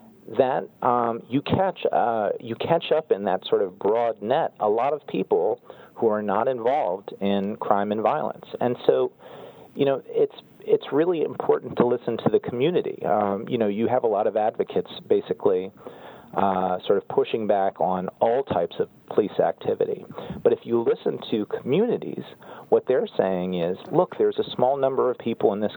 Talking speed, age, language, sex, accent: 185 wpm, 40-59, English, male, American